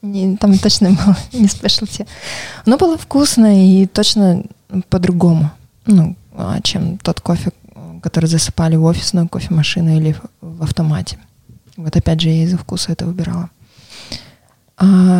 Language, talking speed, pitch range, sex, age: Russian, 135 wpm, 170-210 Hz, female, 20-39